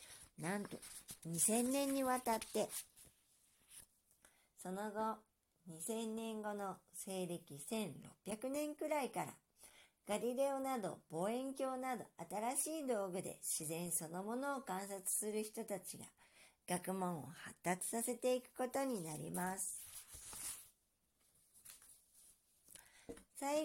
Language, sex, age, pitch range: Japanese, male, 50-69, 175-245 Hz